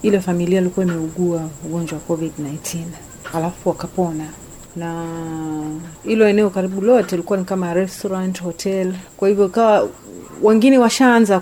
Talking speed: 125 wpm